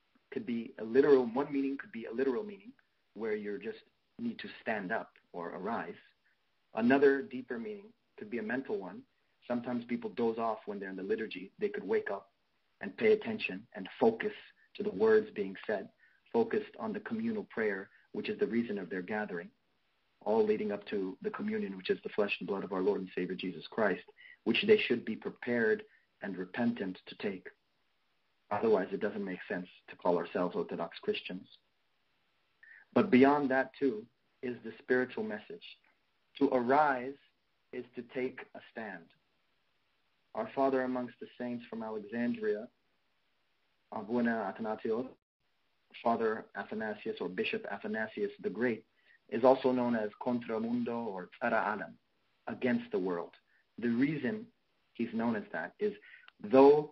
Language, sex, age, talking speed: English, male, 40-59, 160 wpm